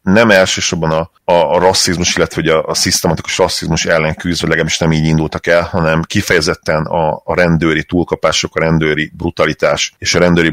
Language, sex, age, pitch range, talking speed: Hungarian, male, 40-59, 80-90 Hz, 170 wpm